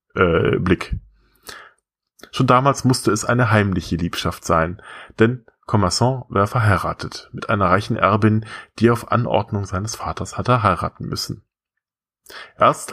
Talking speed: 125 wpm